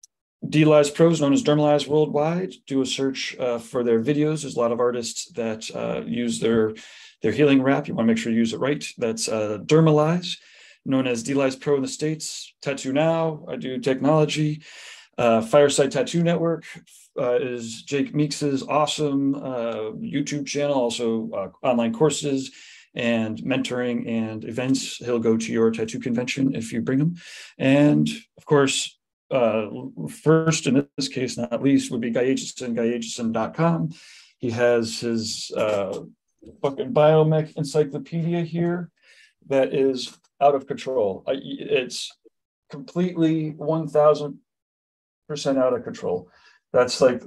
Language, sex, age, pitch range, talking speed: English, male, 30-49, 120-150 Hz, 145 wpm